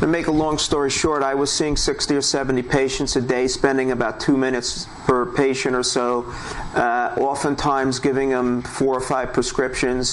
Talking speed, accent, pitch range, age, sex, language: 185 wpm, American, 130-150 Hz, 50-69, male, English